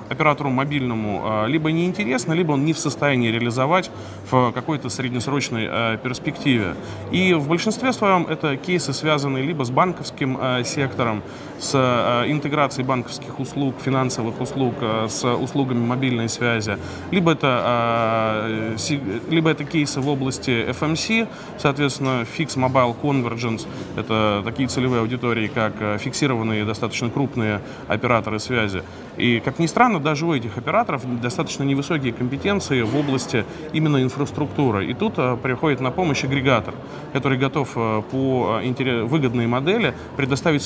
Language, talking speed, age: Russian, 125 wpm, 20-39